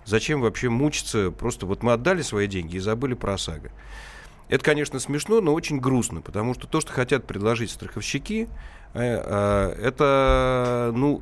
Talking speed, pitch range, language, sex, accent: 150 wpm, 95-125 Hz, Russian, male, native